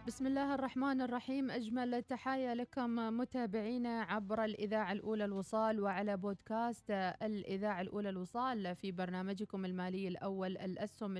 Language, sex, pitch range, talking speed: Arabic, female, 185-220 Hz, 120 wpm